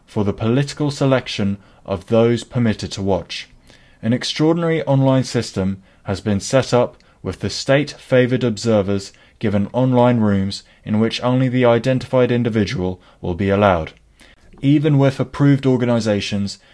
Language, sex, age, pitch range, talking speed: English, male, 20-39, 100-125 Hz, 135 wpm